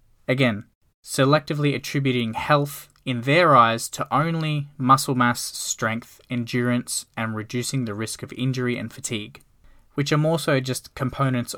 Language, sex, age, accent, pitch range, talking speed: English, male, 10-29, Australian, 110-135 Hz, 140 wpm